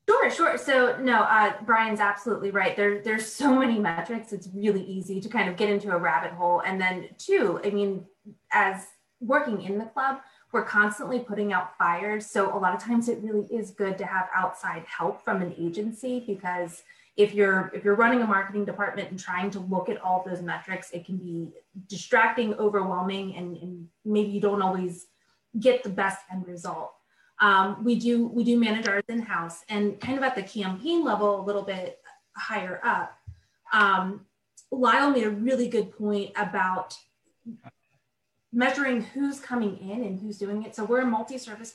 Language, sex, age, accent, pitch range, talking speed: English, female, 20-39, American, 185-230 Hz, 185 wpm